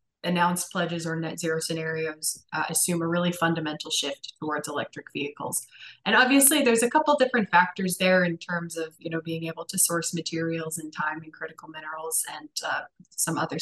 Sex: female